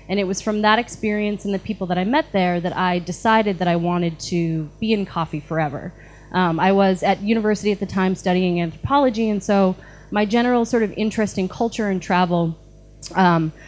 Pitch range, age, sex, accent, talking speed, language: 170-215 Hz, 20-39, female, American, 200 wpm, English